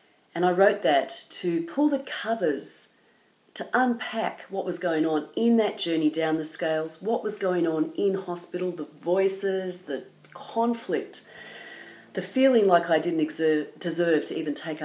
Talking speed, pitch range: 160 wpm, 155-195 Hz